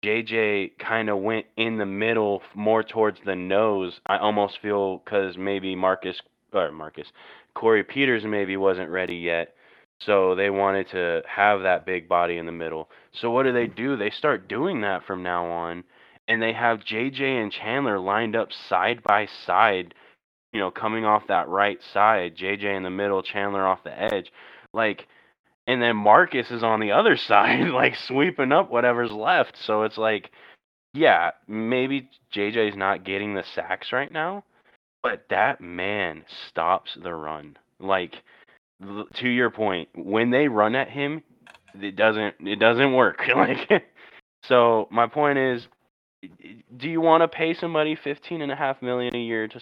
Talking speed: 165 wpm